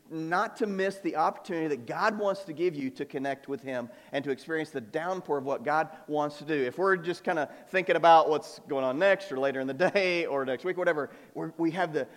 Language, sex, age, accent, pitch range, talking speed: English, male, 40-59, American, 135-185 Hz, 240 wpm